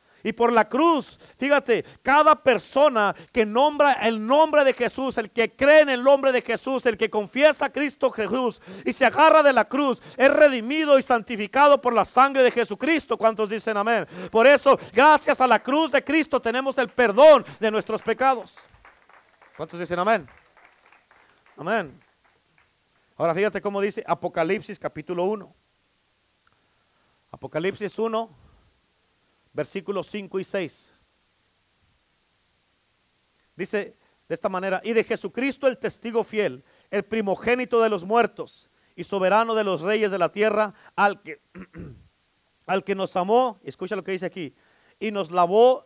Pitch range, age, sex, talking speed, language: 190-255 Hz, 40-59, male, 150 wpm, Spanish